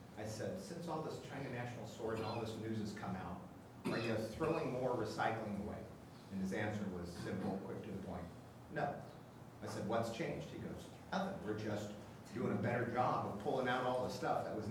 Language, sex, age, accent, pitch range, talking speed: English, male, 40-59, American, 95-120 Hz, 210 wpm